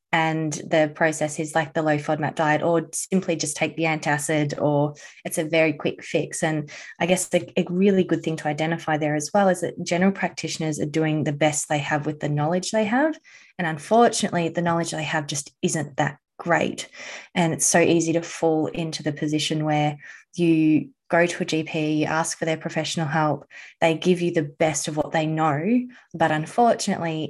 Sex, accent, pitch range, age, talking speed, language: female, Australian, 155-175 Hz, 20-39, 195 wpm, English